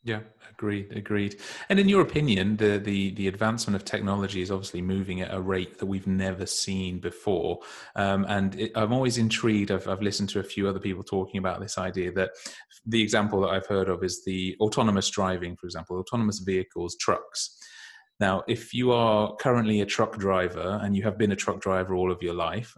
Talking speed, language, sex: 200 wpm, English, male